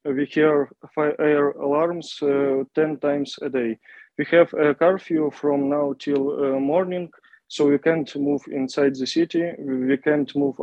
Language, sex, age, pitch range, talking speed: English, male, 20-39, 135-150 Hz, 165 wpm